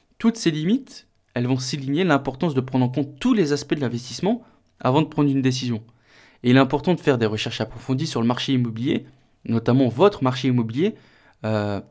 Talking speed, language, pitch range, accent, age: 195 wpm, French, 115-145 Hz, French, 20-39